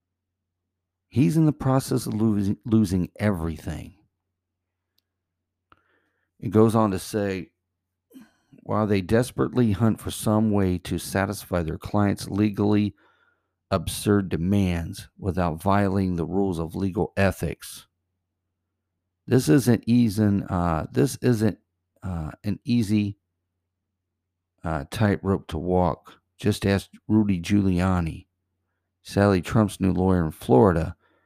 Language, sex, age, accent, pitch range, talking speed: English, male, 50-69, American, 90-105 Hz, 110 wpm